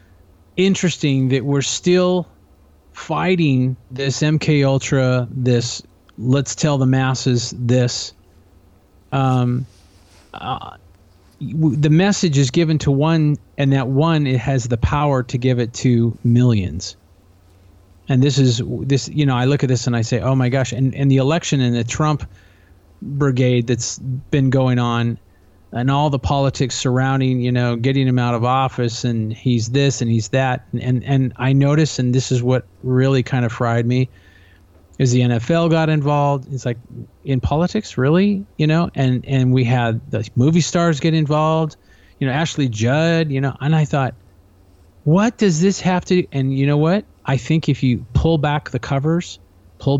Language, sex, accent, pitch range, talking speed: English, male, American, 120-145 Hz, 170 wpm